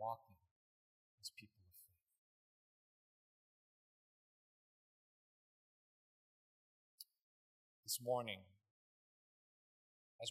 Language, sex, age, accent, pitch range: English, male, 30-49, American, 95-125 Hz